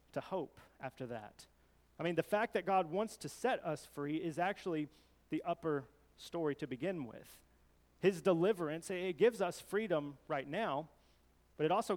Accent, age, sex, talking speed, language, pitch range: American, 30-49, male, 170 wpm, English, 120-175 Hz